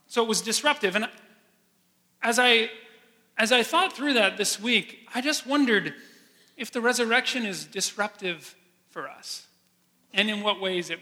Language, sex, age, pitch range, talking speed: English, male, 30-49, 170-220 Hz, 160 wpm